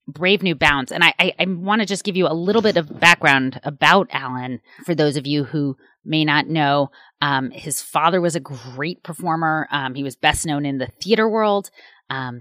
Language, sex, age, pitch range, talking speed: English, female, 30-49, 135-175 Hz, 210 wpm